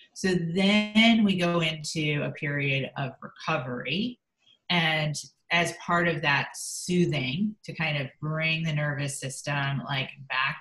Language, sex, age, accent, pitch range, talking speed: English, female, 30-49, American, 140-175 Hz, 135 wpm